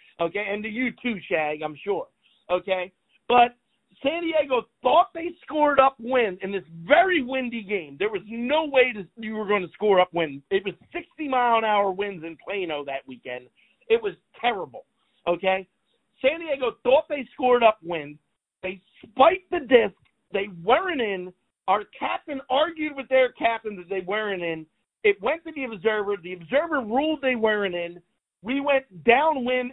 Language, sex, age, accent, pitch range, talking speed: English, male, 40-59, American, 185-260 Hz, 170 wpm